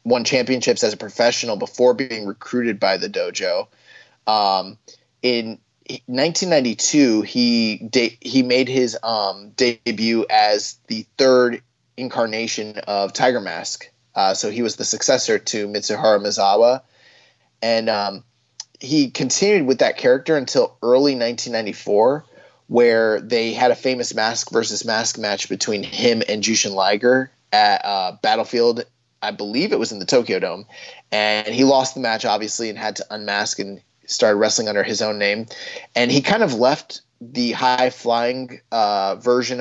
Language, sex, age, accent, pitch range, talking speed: English, male, 20-39, American, 110-130 Hz, 150 wpm